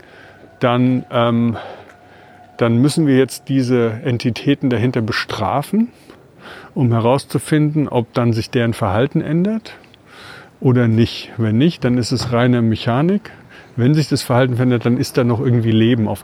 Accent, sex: German, male